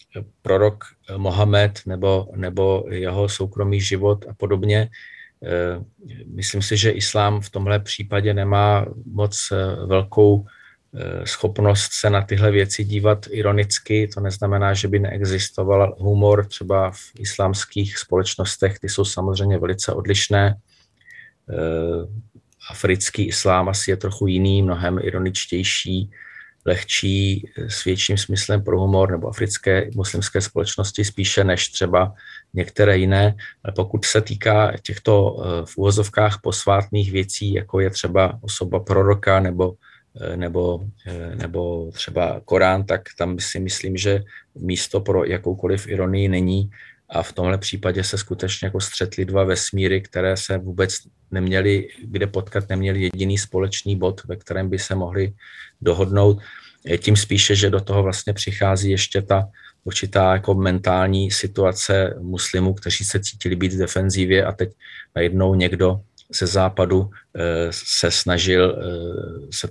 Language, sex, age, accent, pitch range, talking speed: Czech, male, 40-59, native, 95-105 Hz, 125 wpm